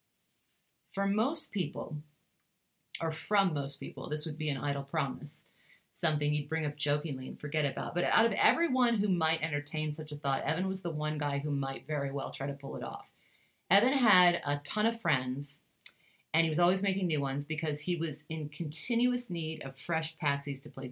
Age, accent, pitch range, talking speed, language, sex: 30-49, American, 145-175 Hz, 200 wpm, English, female